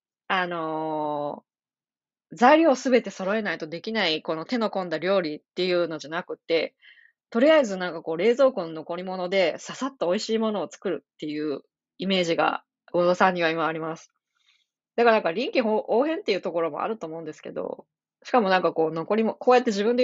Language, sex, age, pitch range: Japanese, female, 20-39, 165-230 Hz